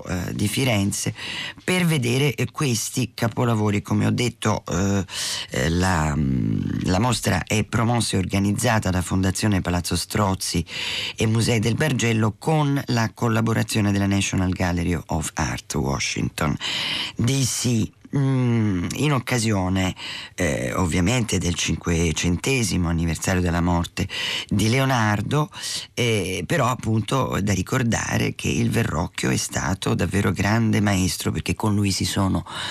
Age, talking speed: 40-59, 120 wpm